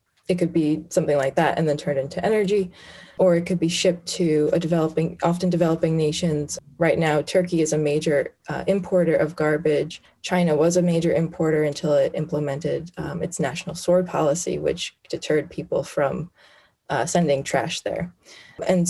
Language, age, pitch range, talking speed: English, 20-39, 155-180 Hz, 170 wpm